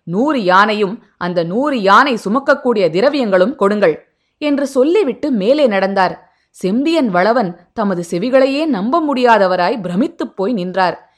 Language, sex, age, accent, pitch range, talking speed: Tamil, female, 20-39, native, 205-290 Hz, 115 wpm